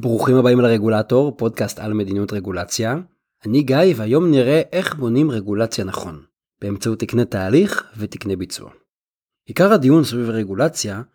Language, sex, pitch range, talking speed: Hebrew, male, 110-170 Hz, 130 wpm